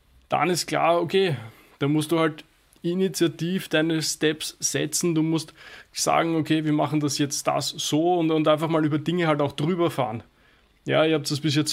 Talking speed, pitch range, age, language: 195 wpm, 140-155 Hz, 20-39, German